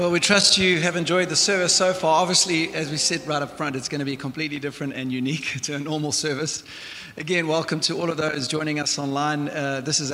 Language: English